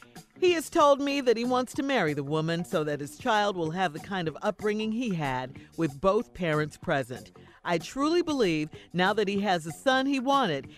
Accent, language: American, English